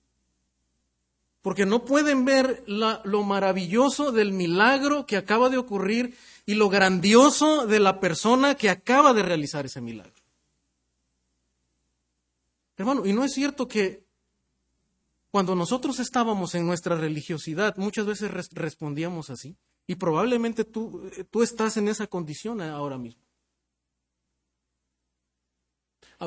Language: Spanish